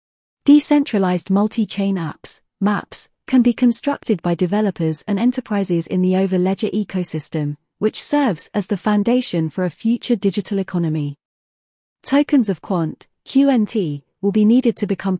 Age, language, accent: 30-49, English, British